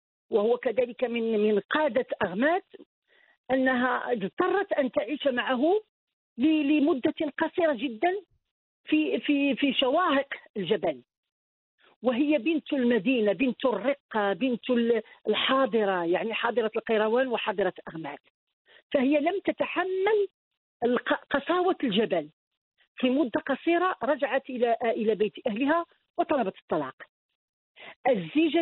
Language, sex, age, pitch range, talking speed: Arabic, female, 50-69, 235-315 Hz, 100 wpm